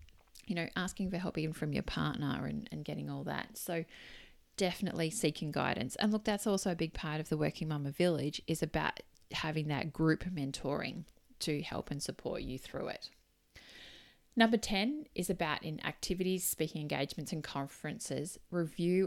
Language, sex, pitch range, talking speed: English, female, 145-185 Hz, 170 wpm